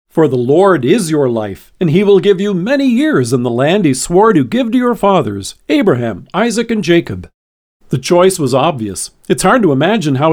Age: 50-69